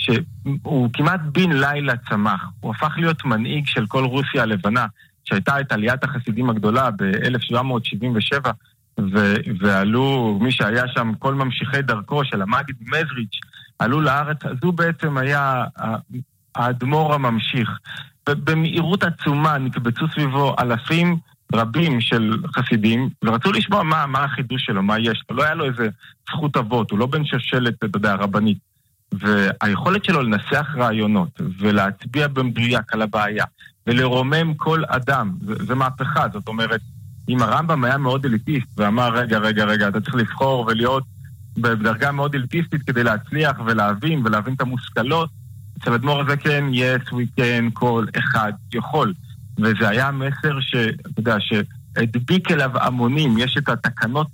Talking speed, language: 135 wpm, Hebrew